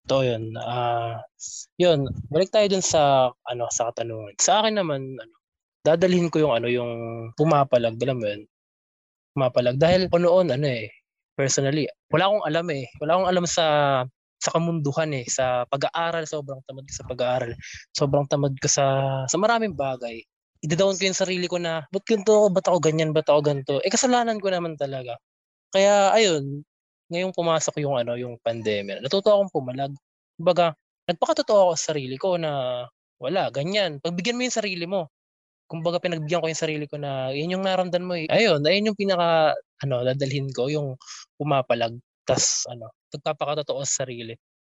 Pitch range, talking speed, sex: 130-175 Hz, 160 wpm, male